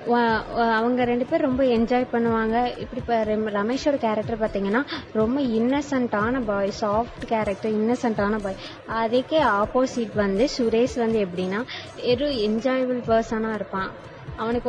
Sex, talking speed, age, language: female, 75 wpm, 20-39, Tamil